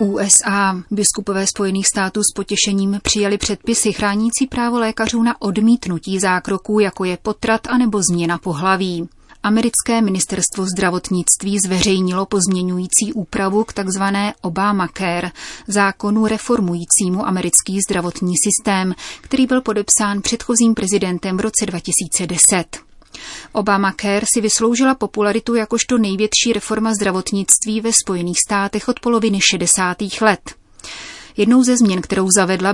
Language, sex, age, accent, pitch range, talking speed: Czech, female, 30-49, native, 185-215 Hz, 115 wpm